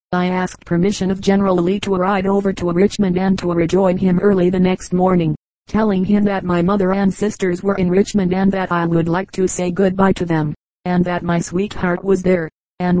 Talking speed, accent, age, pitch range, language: 210 wpm, American, 40-59, 180-195 Hz, English